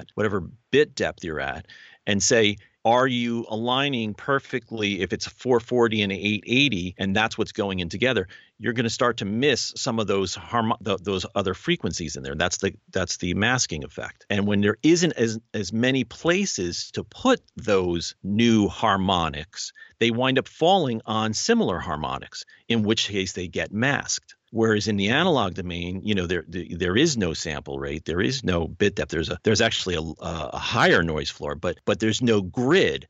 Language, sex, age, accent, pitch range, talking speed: English, male, 50-69, American, 95-120 Hz, 185 wpm